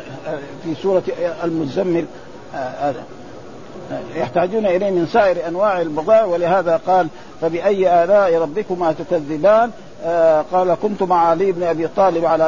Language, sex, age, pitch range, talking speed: Arabic, male, 50-69, 165-200 Hz, 110 wpm